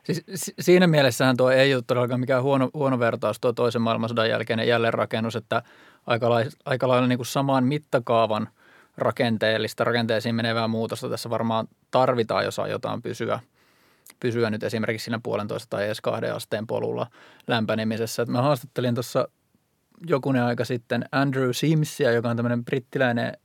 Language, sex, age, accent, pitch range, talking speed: Finnish, male, 20-39, native, 115-135 Hz, 150 wpm